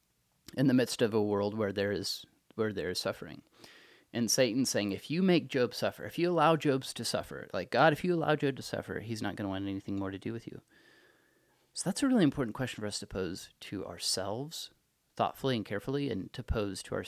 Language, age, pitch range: English, 30-49, 100-135 Hz